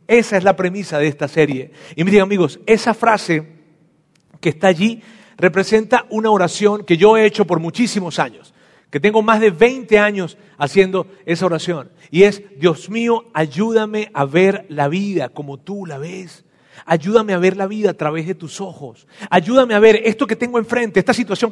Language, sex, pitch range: Spanish, male, 185-240 Hz